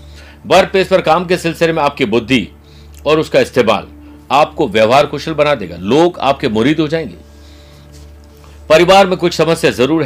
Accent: native